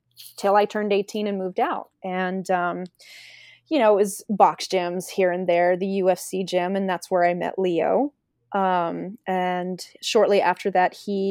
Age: 20-39